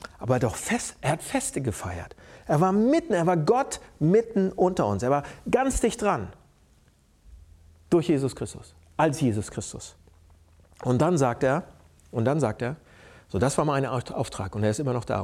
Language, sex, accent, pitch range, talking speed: German, male, German, 135-205 Hz, 180 wpm